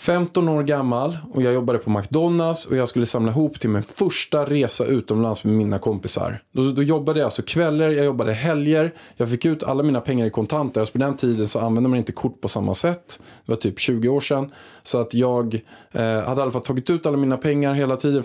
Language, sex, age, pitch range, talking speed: Swedish, male, 20-39, 115-150 Hz, 235 wpm